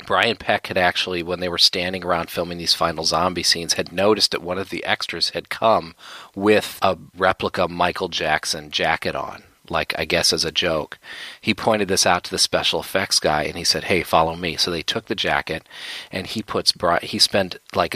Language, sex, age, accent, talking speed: English, male, 40-59, American, 205 wpm